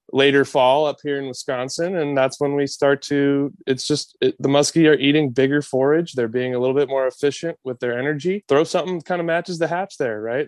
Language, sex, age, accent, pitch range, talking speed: English, male, 20-39, American, 135-165 Hz, 230 wpm